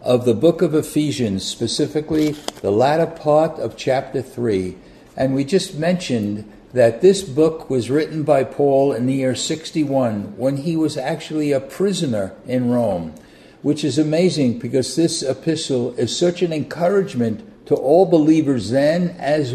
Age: 60-79